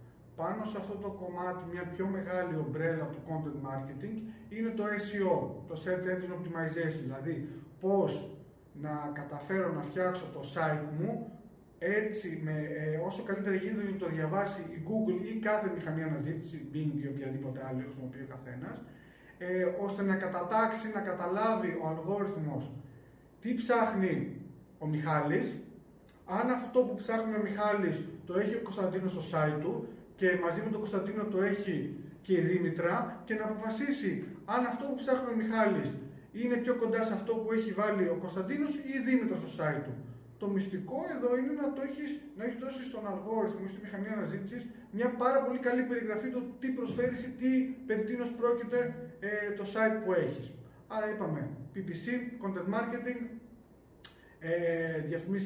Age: 30-49